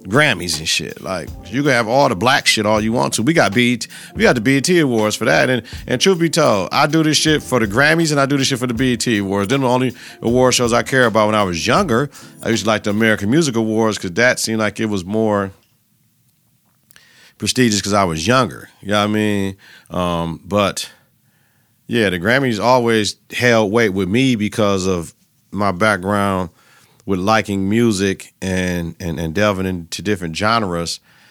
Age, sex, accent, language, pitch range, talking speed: 40-59, male, American, English, 95-125 Hz, 205 wpm